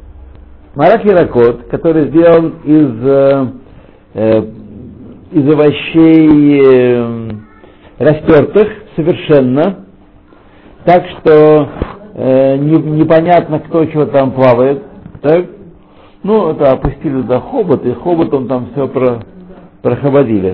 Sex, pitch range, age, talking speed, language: male, 120-160 Hz, 60-79, 95 wpm, Russian